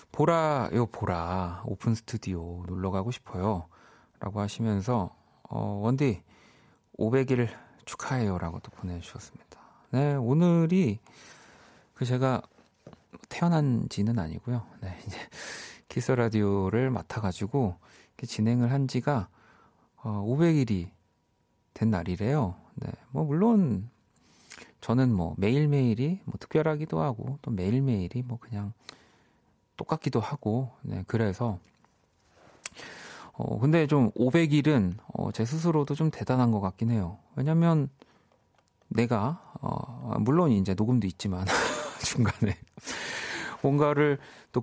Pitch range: 100-140 Hz